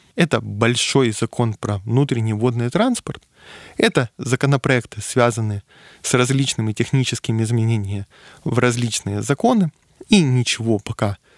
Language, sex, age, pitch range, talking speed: Russian, male, 20-39, 110-140 Hz, 105 wpm